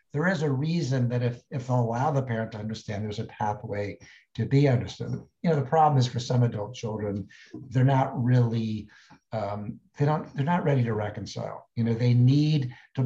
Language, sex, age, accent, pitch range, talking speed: English, male, 60-79, American, 110-130 Hz, 200 wpm